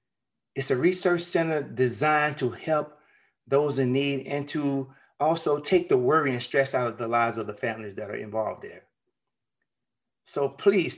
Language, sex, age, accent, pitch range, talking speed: English, male, 30-49, American, 125-165 Hz, 170 wpm